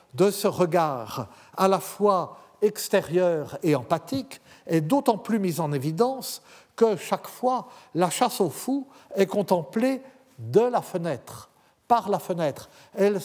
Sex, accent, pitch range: male, French, 145-215 Hz